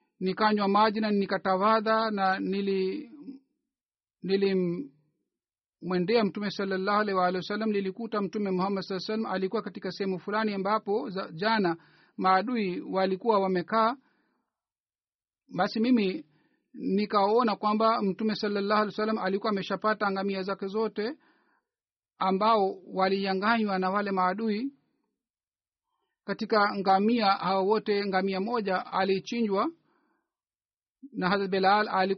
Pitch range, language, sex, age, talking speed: 195-220 Hz, Swahili, male, 50-69, 100 wpm